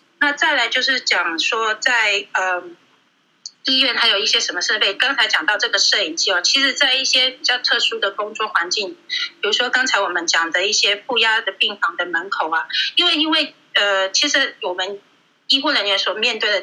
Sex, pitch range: female, 195-285 Hz